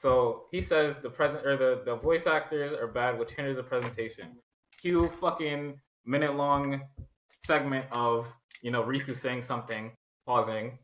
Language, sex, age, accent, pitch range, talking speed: English, male, 20-39, American, 120-145 Hz, 150 wpm